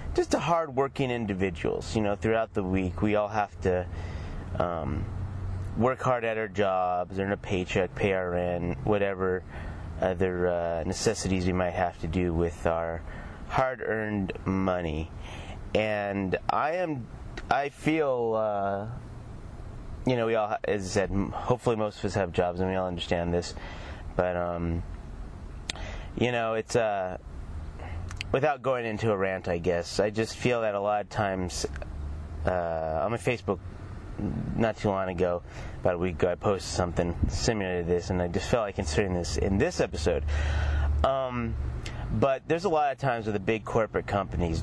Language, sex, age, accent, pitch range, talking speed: English, male, 30-49, American, 85-110 Hz, 170 wpm